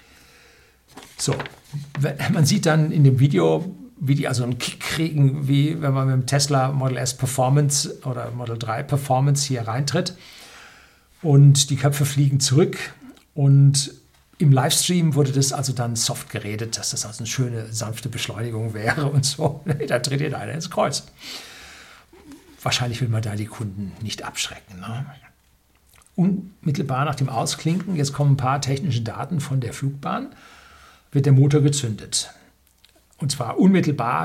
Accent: German